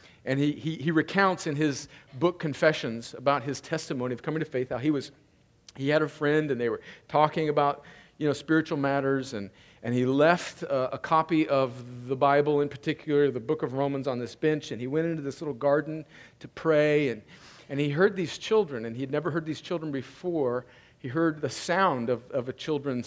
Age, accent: 50-69, American